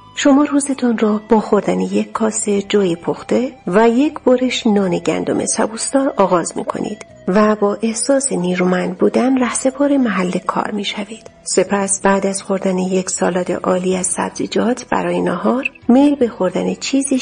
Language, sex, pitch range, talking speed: Persian, female, 195-255 Hz, 145 wpm